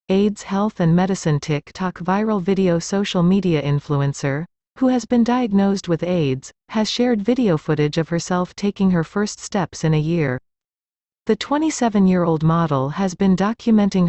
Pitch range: 160-210 Hz